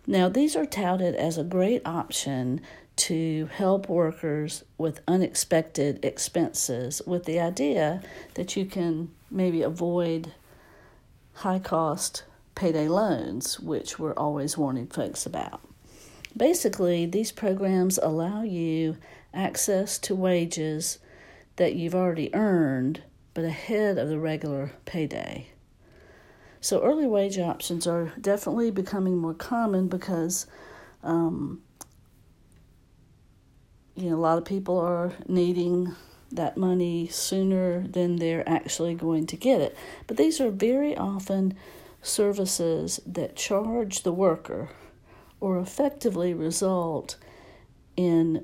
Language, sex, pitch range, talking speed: English, female, 160-190 Hz, 115 wpm